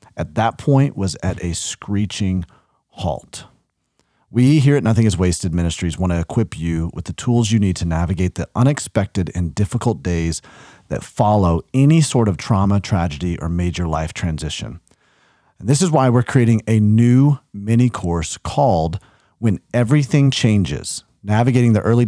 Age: 40-59